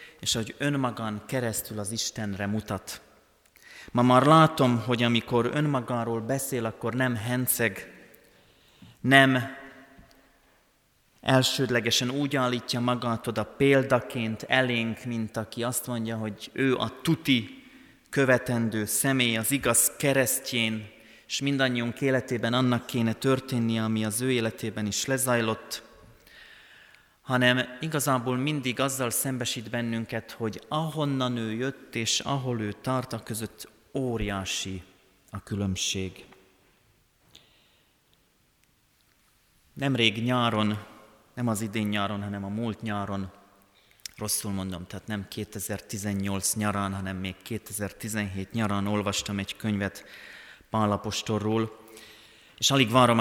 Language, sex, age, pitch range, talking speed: Hungarian, male, 30-49, 105-125 Hz, 105 wpm